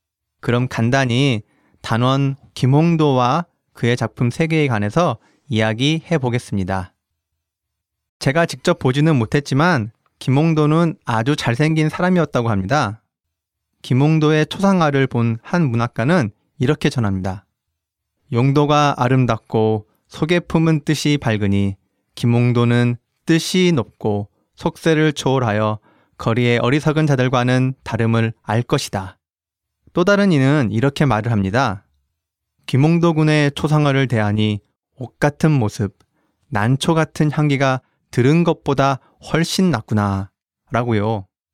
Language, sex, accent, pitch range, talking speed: English, male, Korean, 105-150 Hz, 90 wpm